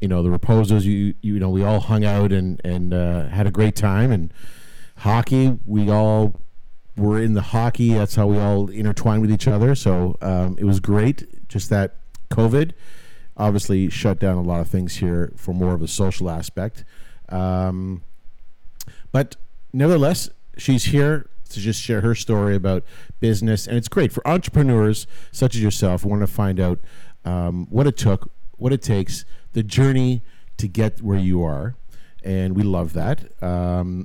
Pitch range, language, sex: 95-120 Hz, English, male